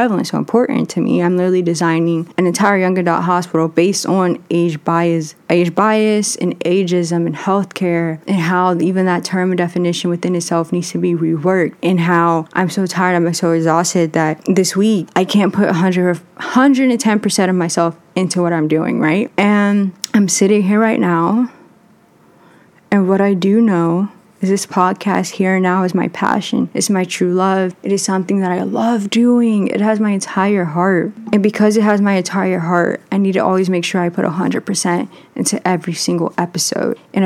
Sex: female